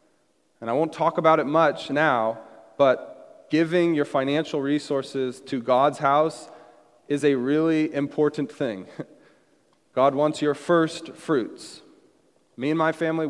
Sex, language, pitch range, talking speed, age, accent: male, English, 120-150 Hz, 135 wpm, 30-49, American